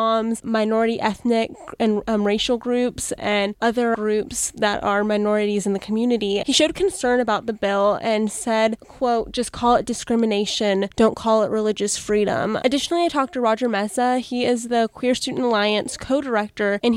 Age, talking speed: 10-29, 165 wpm